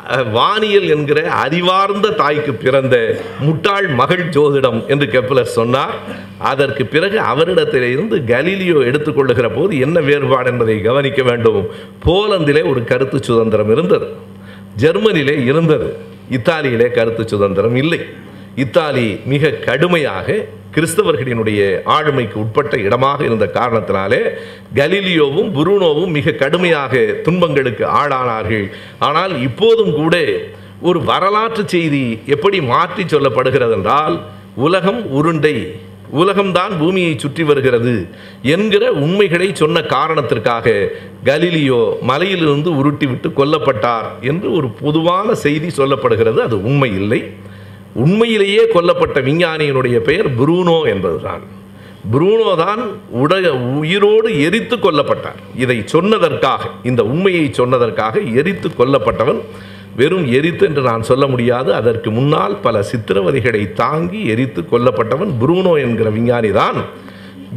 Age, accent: 50-69, native